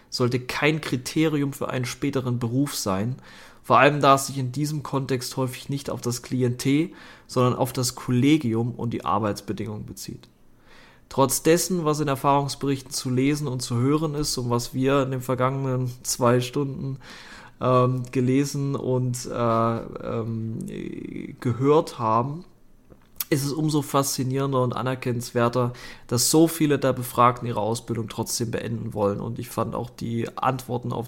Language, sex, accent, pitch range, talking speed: German, male, German, 120-140 Hz, 150 wpm